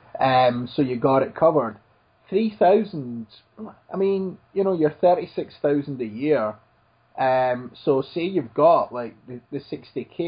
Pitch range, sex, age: 120-150 Hz, male, 20-39